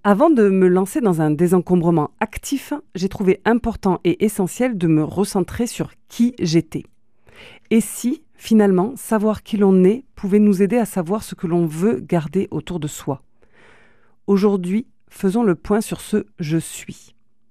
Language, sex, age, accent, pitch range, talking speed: French, female, 40-59, French, 160-215 Hz, 160 wpm